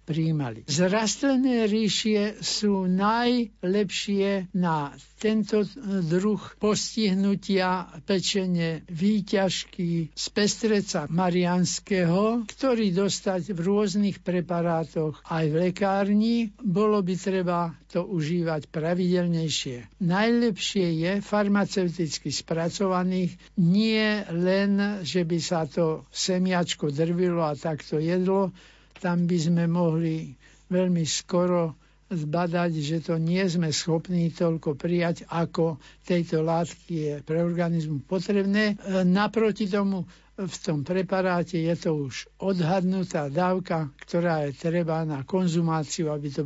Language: Slovak